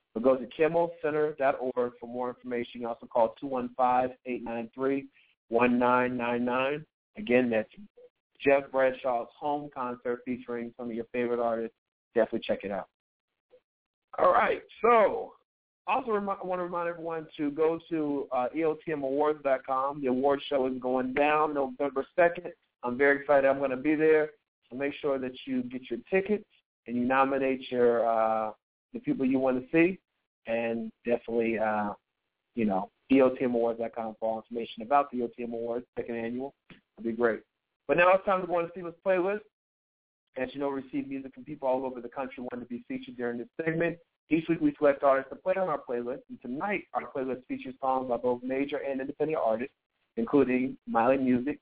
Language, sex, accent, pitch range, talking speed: English, male, American, 120-150 Hz, 175 wpm